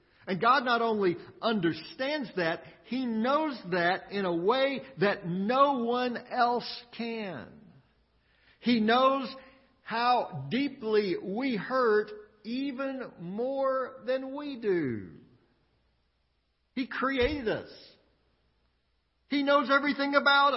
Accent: American